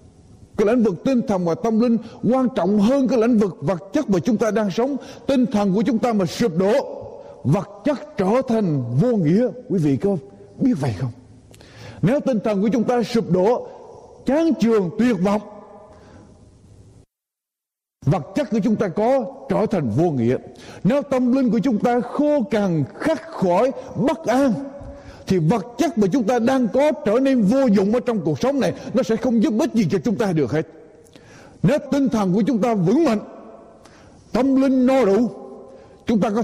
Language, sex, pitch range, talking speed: Vietnamese, male, 165-255 Hz, 195 wpm